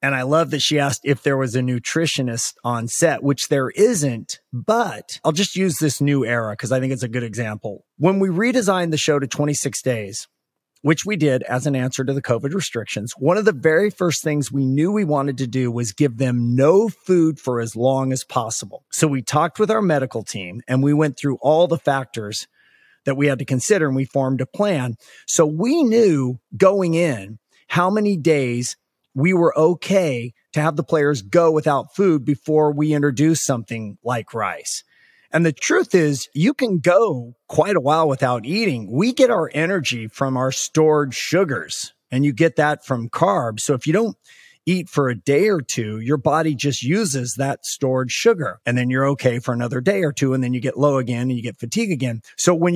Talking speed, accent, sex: 210 wpm, American, male